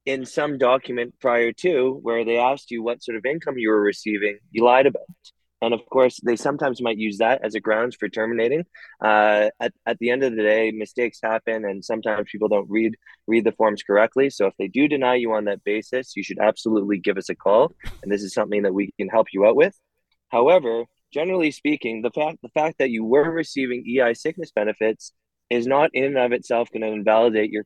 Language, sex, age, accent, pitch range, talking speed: English, male, 20-39, American, 110-130 Hz, 220 wpm